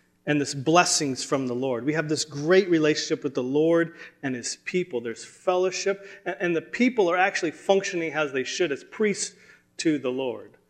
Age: 30-49